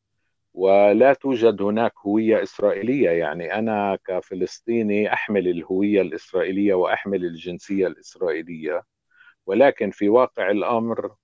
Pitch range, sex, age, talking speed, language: 95-120 Hz, male, 50-69, 95 wpm, Arabic